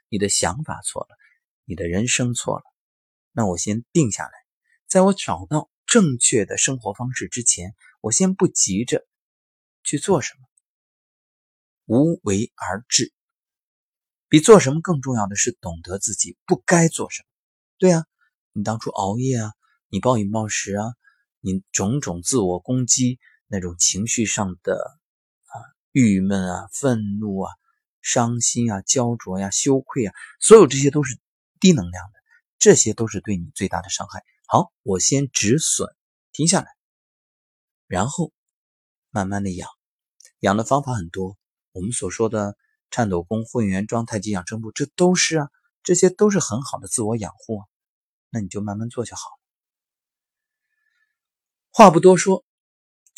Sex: male